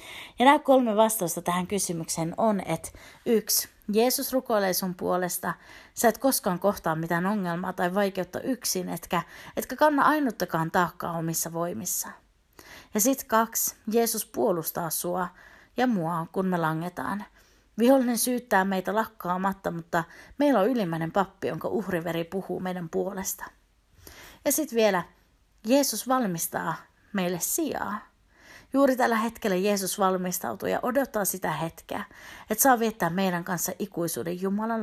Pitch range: 175-235 Hz